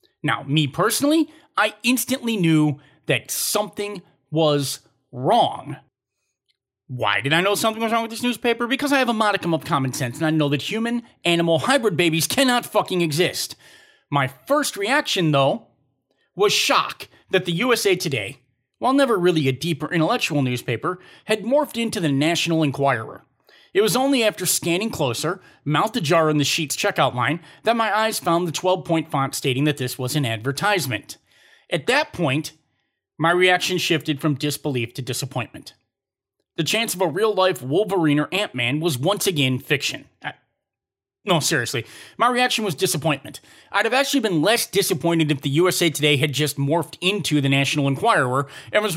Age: 30-49